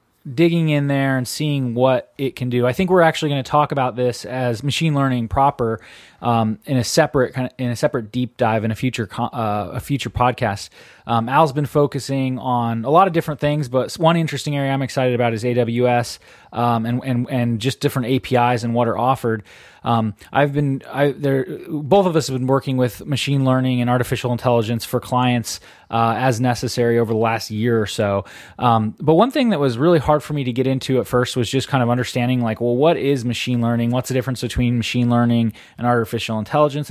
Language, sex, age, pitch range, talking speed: English, male, 20-39, 120-145 Hz, 215 wpm